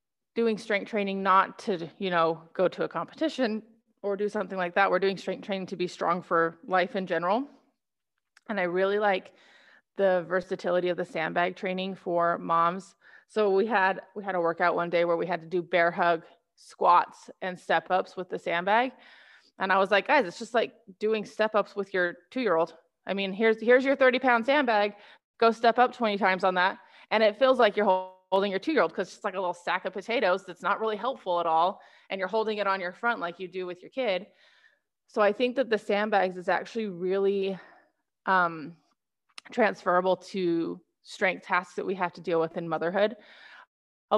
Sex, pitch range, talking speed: female, 180-210 Hz, 205 wpm